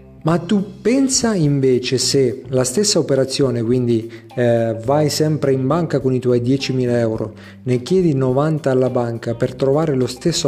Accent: native